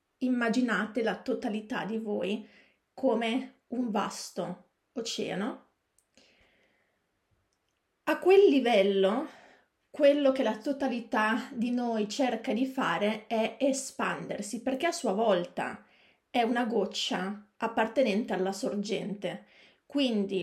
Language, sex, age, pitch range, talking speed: Italian, female, 30-49, 210-260 Hz, 100 wpm